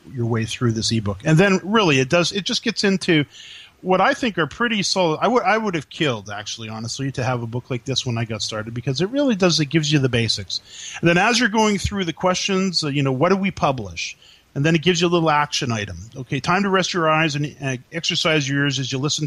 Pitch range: 125-160 Hz